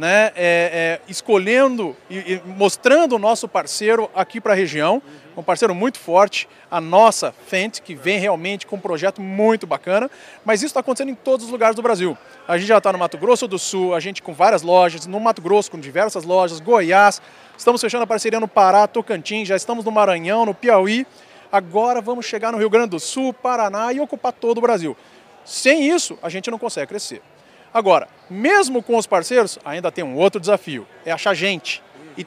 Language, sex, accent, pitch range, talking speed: Portuguese, male, Brazilian, 185-230 Hz, 195 wpm